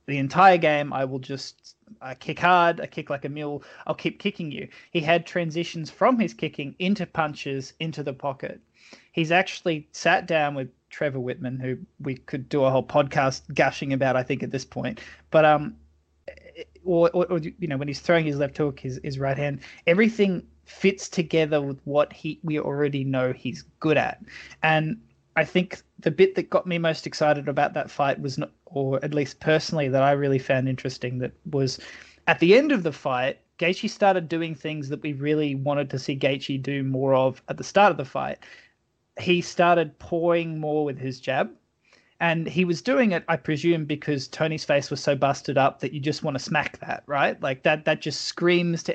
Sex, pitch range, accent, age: male, 135-170 Hz, Australian, 20-39